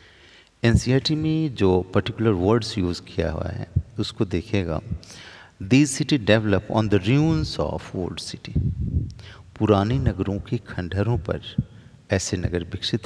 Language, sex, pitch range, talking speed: Hindi, male, 95-120 Hz, 130 wpm